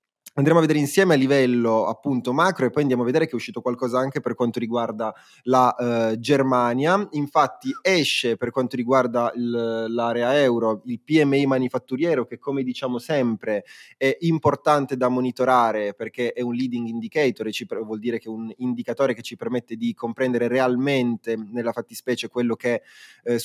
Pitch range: 120-145 Hz